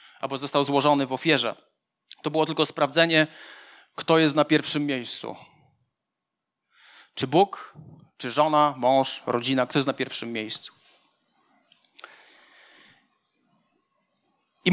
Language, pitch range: Polish, 180-250 Hz